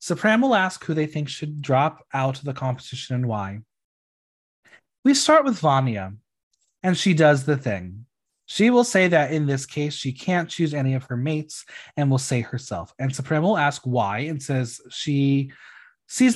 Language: English